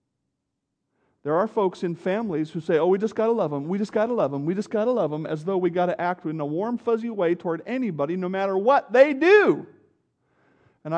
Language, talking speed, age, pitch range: English, 245 wpm, 50-69, 150-220 Hz